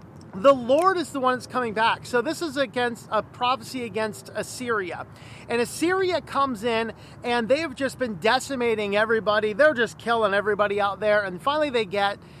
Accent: American